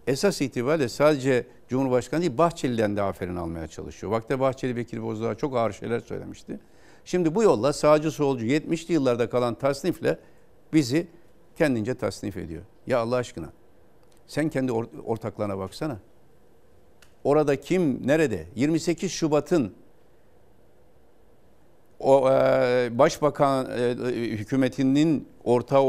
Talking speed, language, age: 115 wpm, Turkish, 60-79